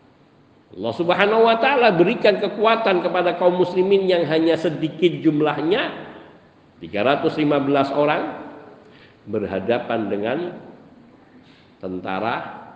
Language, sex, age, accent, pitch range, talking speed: Indonesian, male, 50-69, native, 130-210 Hz, 85 wpm